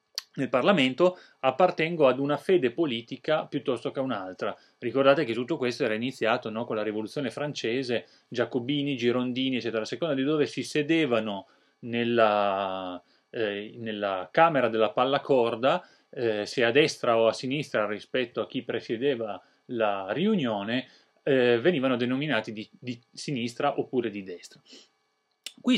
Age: 30-49